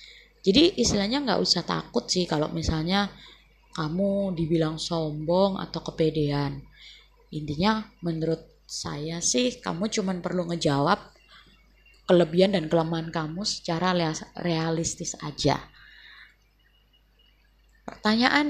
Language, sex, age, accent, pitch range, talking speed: Indonesian, female, 20-39, native, 165-220 Hz, 95 wpm